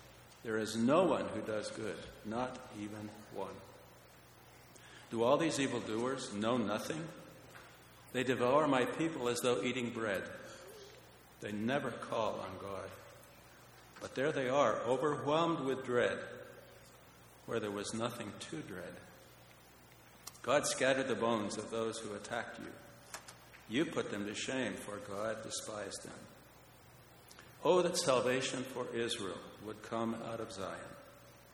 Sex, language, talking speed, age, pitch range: male, English, 135 wpm, 60-79, 105-130 Hz